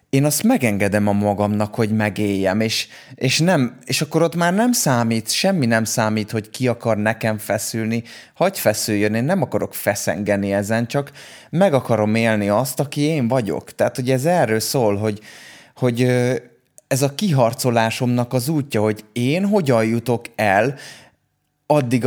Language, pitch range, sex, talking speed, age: Hungarian, 105-130 Hz, male, 155 wpm, 20-39